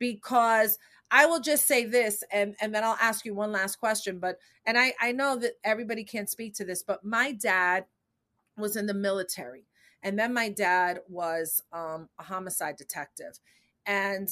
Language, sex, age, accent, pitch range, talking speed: English, female, 30-49, American, 185-235 Hz, 180 wpm